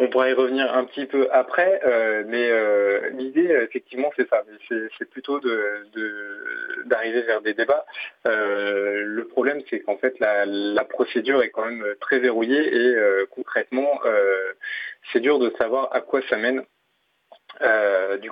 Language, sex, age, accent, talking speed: French, male, 30-49, French, 170 wpm